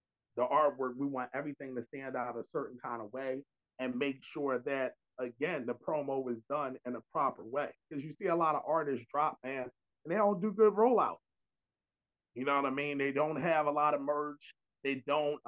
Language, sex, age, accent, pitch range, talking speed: English, male, 30-49, American, 130-150 Hz, 215 wpm